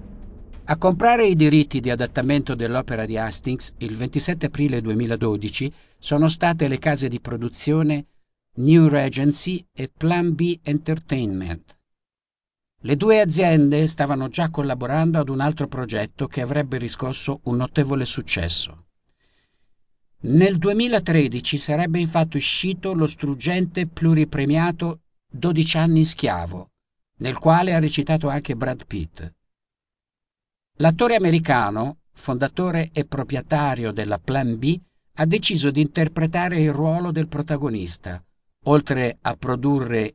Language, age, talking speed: Italian, 50-69, 120 wpm